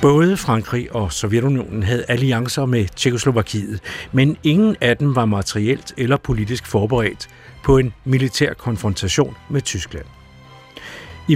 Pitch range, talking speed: 100-135 Hz, 125 wpm